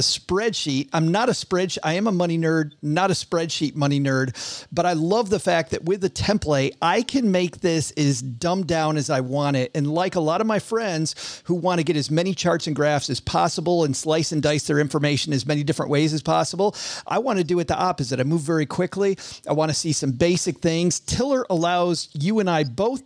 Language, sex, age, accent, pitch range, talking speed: English, male, 40-59, American, 145-175 Hz, 225 wpm